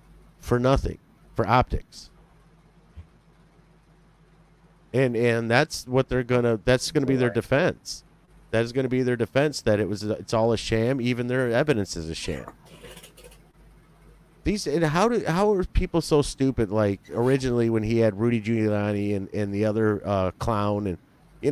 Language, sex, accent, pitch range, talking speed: English, male, American, 110-160 Hz, 160 wpm